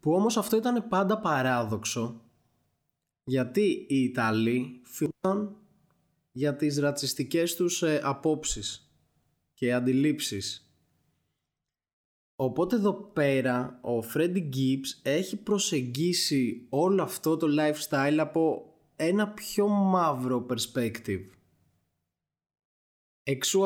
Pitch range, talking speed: 125-170 Hz, 90 wpm